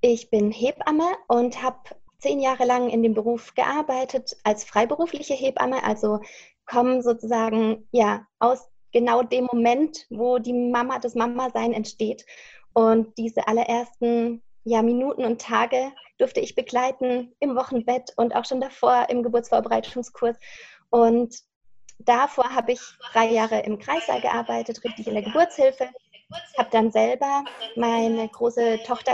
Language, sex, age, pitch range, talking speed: German, female, 20-39, 225-260 Hz, 140 wpm